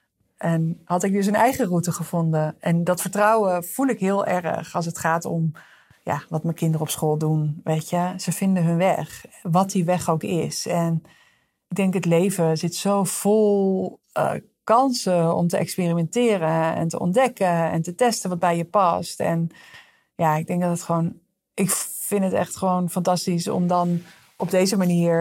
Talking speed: 185 wpm